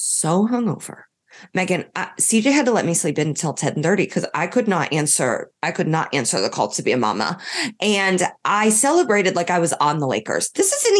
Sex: female